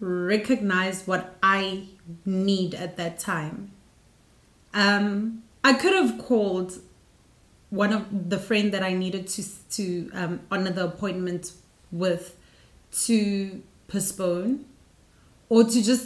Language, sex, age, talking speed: English, female, 30-49, 115 wpm